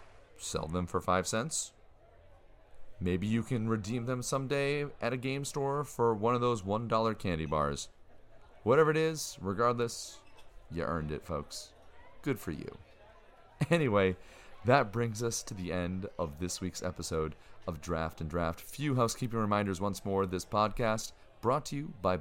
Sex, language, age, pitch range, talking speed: male, English, 40-59, 90-120 Hz, 160 wpm